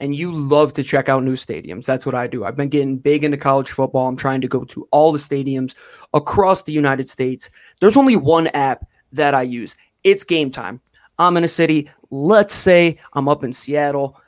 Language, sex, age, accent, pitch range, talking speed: English, male, 20-39, American, 135-170 Hz, 215 wpm